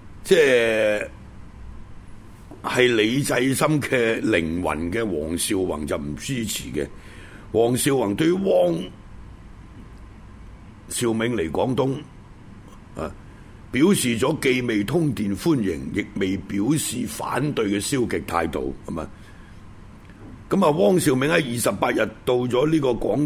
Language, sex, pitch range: Chinese, male, 100-140 Hz